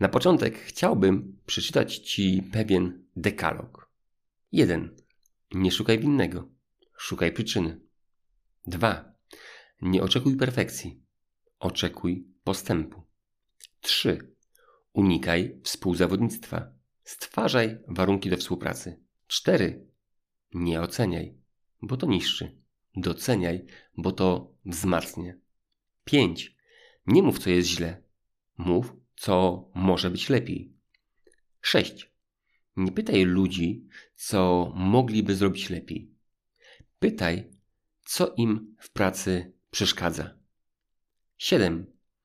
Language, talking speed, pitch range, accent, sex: Polish, 90 wpm, 90-105 Hz, native, male